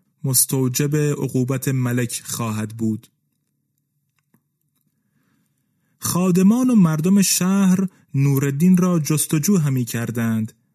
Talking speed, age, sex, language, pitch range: 80 wpm, 30-49, male, Persian, 135-170 Hz